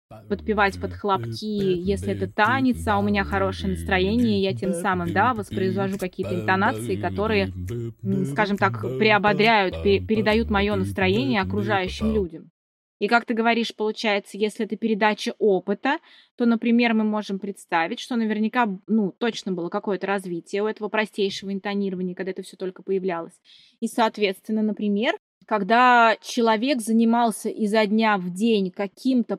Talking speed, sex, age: 140 wpm, female, 20-39